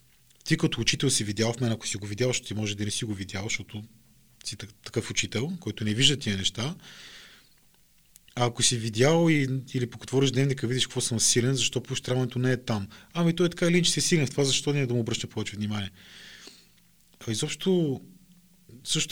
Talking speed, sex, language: 205 wpm, male, Bulgarian